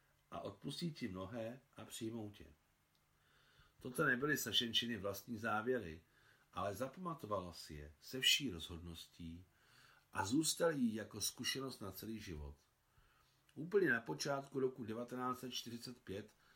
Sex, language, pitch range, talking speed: male, Czech, 90-115 Hz, 115 wpm